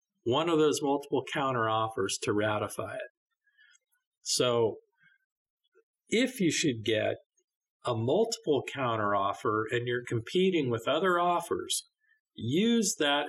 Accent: American